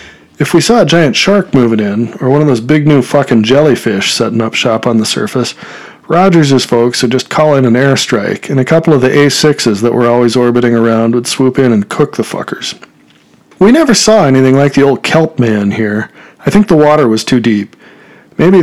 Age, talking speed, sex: 40-59, 215 wpm, male